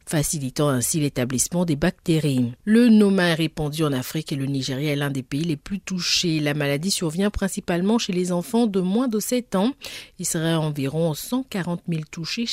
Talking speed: 185 wpm